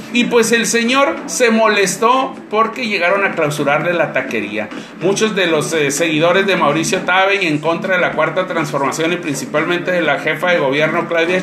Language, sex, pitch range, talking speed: Spanish, male, 175-245 Hz, 185 wpm